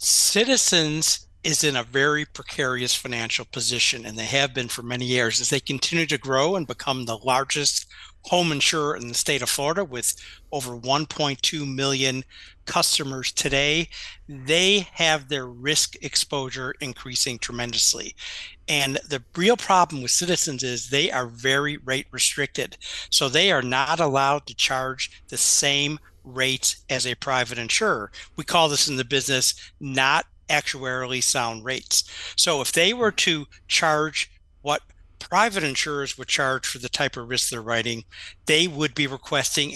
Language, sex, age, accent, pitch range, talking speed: English, male, 50-69, American, 125-150 Hz, 155 wpm